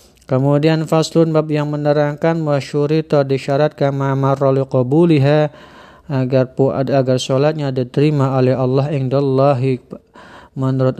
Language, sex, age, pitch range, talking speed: Indonesian, male, 40-59, 130-140 Hz, 95 wpm